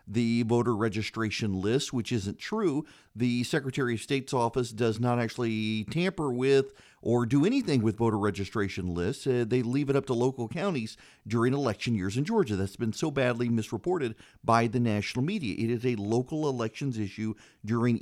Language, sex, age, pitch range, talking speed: English, male, 40-59, 115-145 Hz, 175 wpm